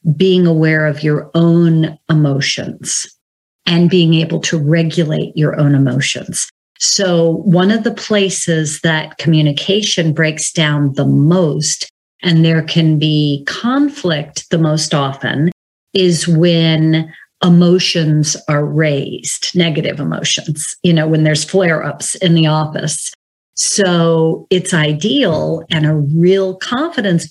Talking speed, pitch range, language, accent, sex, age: 125 wpm, 150-180 Hz, English, American, female, 40-59